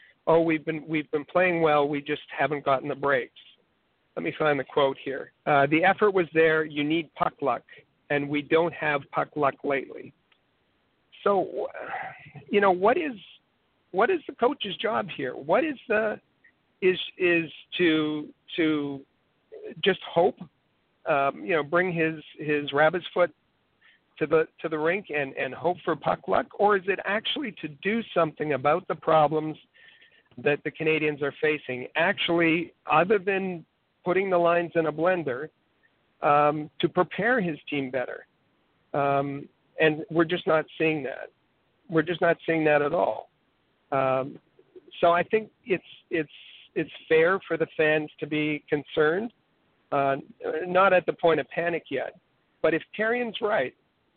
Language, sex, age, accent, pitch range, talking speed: English, male, 50-69, American, 150-185 Hz, 160 wpm